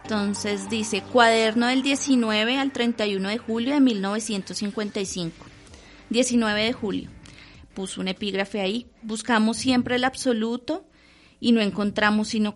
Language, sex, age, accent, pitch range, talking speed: English, female, 30-49, Colombian, 190-230 Hz, 125 wpm